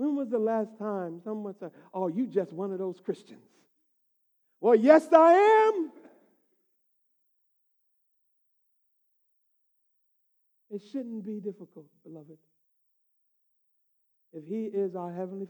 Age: 60-79